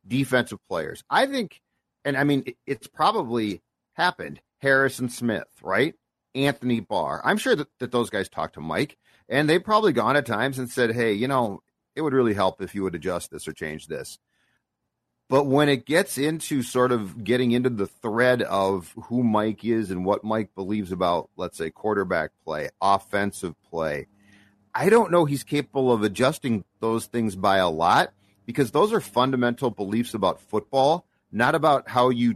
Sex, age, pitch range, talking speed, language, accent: male, 40-59, 105-135 Hz, 180 wpm, English, American